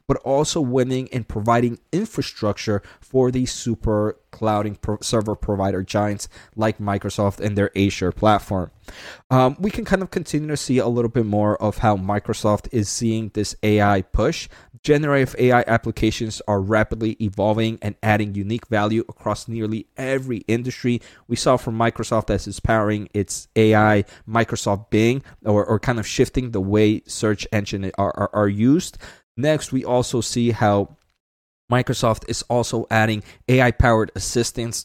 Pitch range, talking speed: 105-125 Hz, 155 wpm